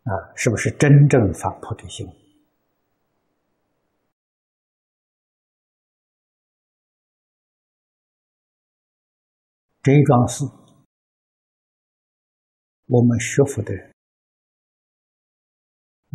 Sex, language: male, Chinese